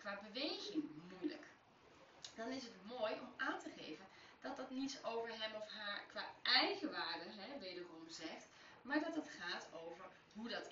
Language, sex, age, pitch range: Dutch, female, 30-49, 215-305 Hz